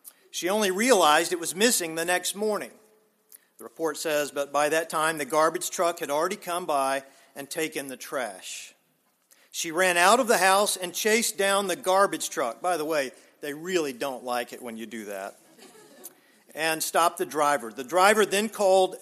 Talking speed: 185 wpm